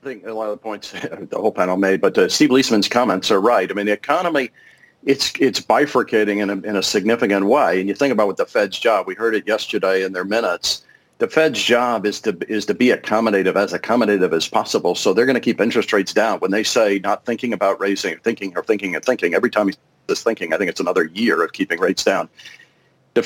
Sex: male